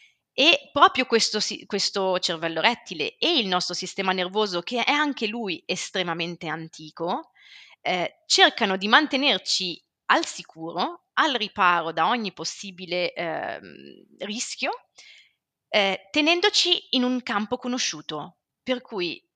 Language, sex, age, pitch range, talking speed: Italian, female, 30-49, 170-245 Hz, 120 wpm